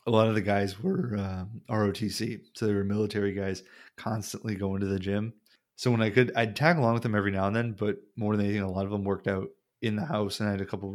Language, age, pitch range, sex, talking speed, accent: English, 20-39, 95-110 Hz, male, 275 wpm, American